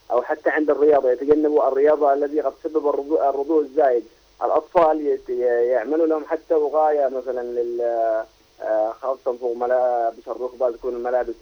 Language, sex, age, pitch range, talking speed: Arabic, male, 30-49, 120-155 Hz, 140 wpm